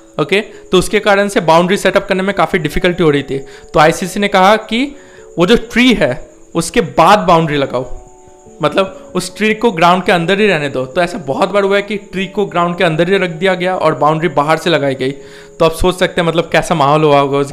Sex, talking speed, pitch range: male, 235 wpm, 165-205 Hz